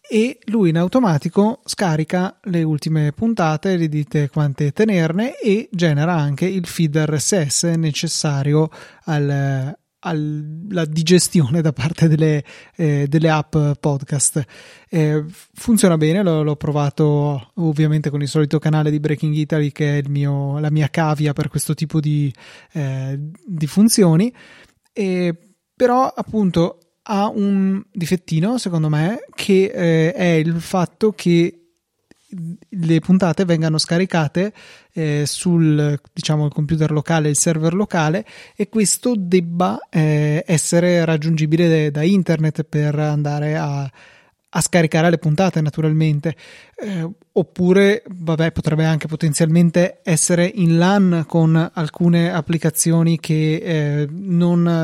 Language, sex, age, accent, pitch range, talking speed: Italian, male, 20-39, native, 150-175 Hz, 120 wpm